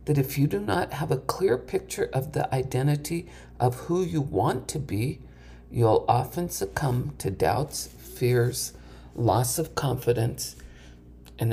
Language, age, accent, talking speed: English, 50-69, American, 145 wpm